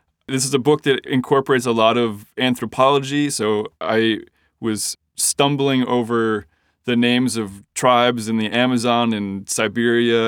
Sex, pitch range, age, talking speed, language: male, 110-130 Hz, 20-39, 140 wpm, English